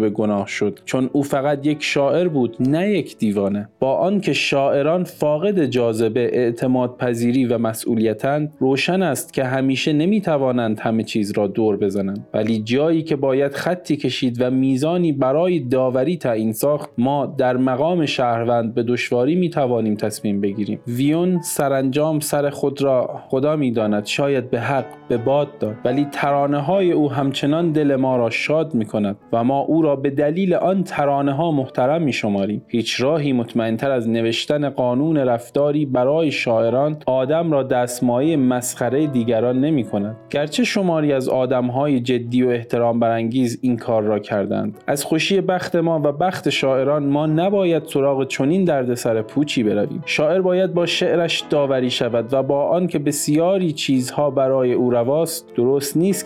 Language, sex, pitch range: Persian, male, 120-150 Hz